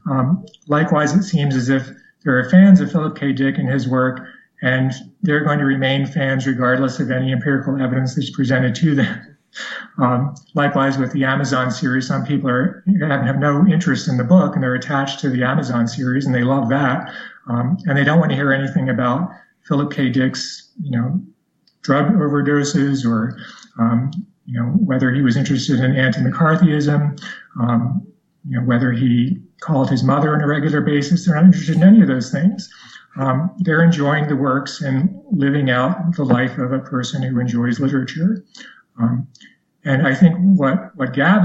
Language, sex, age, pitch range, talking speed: English, male, 40-59, 130-170 Hz, 180 wpm